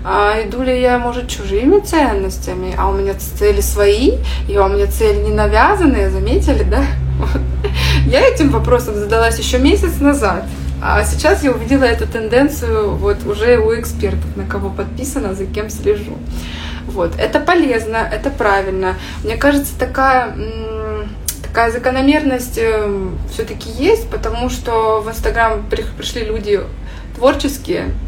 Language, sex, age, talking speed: Russian, female, 20-39, 130 wpm